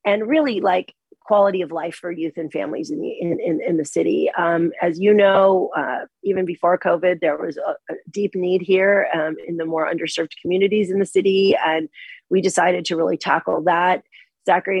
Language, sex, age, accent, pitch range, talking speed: English, female, 30-49, American, 160-185 Hz, 200 wpm